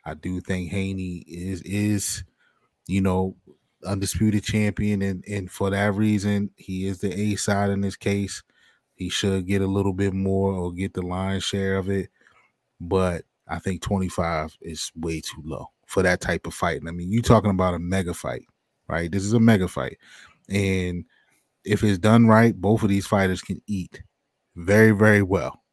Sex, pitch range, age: male, 90-105 Hz, 20-39